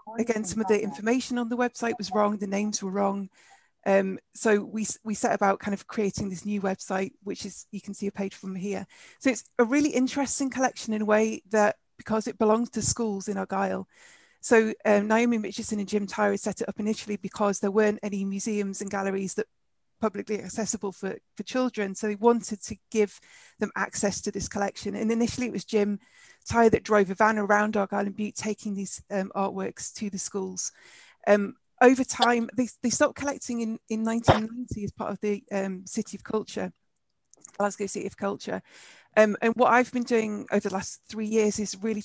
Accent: British